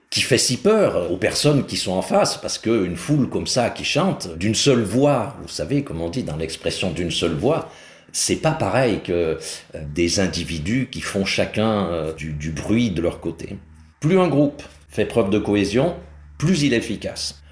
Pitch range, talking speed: 85-120 Hz, 190 wpm